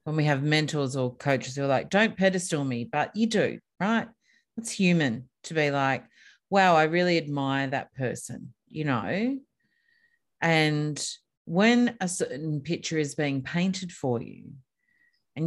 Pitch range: 145-200 Hz